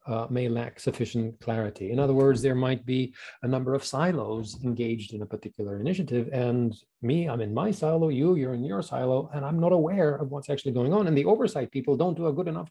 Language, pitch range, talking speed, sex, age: English, 120-165 Hz, 230 wpm, male, 40-59